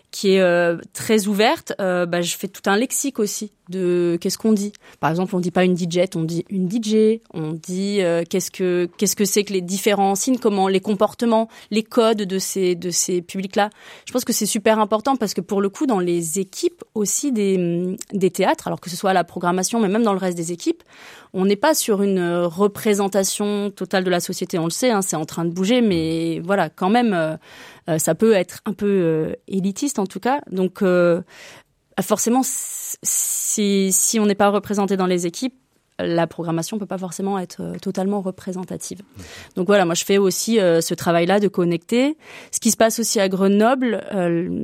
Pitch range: 175-210 Hz